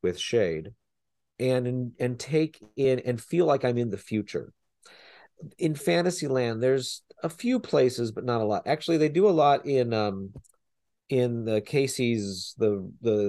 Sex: male